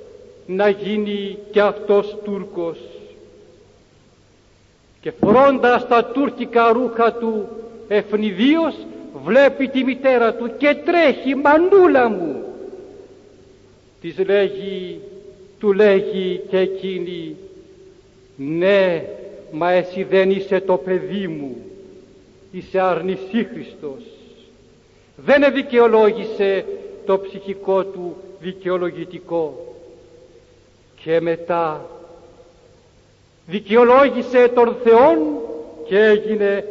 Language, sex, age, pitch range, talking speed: Greek, male, 60-79, 190-230 Hz, 80 wpm